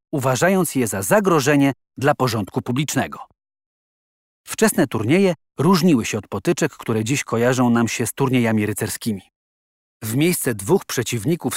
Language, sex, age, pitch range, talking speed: Polish, male, 40-59, 110-150 Hz, 130 wpm